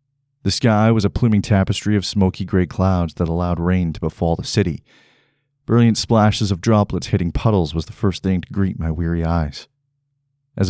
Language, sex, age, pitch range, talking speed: English, male, 40-59, 90-130 Hz, 185 wpm